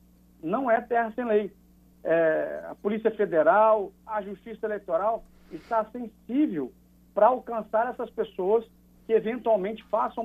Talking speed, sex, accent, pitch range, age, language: 125 wpm, male, Brazilian, 170-230 Hz, 60-79, Portuguese